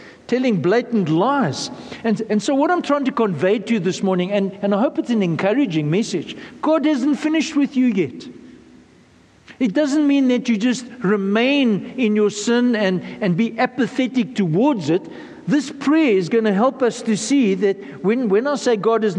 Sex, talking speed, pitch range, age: male, 190 wpm, 190-245 Hz, 60-79